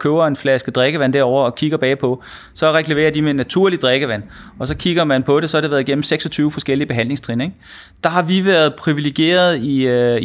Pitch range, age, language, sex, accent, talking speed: 125-165 Hz, 30-49, Danish, male, native, 205 wpm